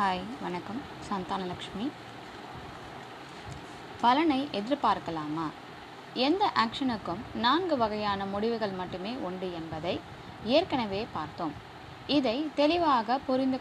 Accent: native